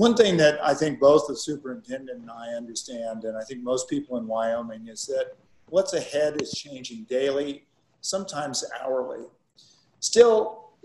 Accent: American